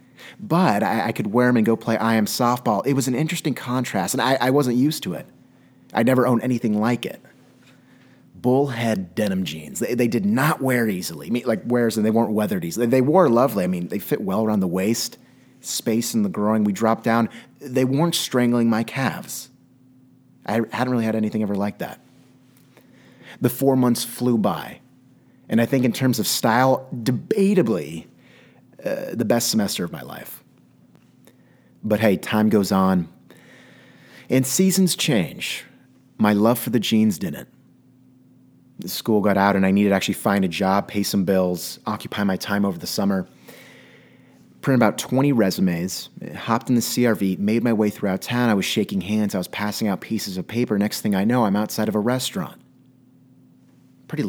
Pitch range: 105-130 Hz